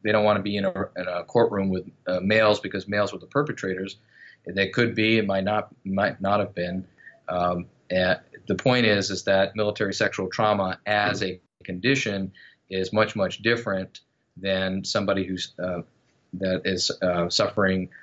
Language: English